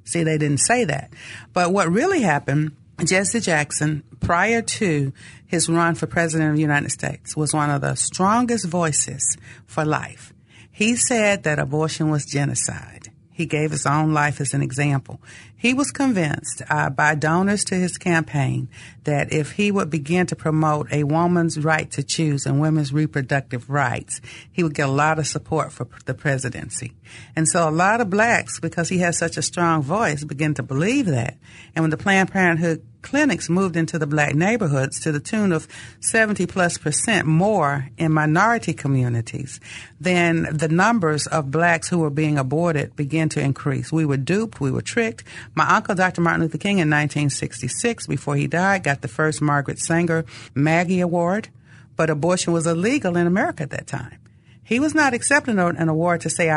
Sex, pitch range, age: female, 140-175 Hz, 50-69